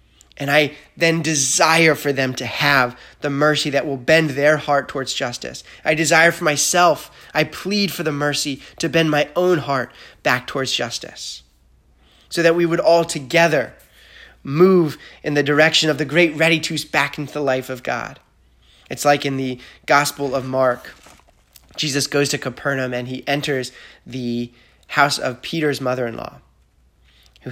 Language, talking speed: English, 170 wpm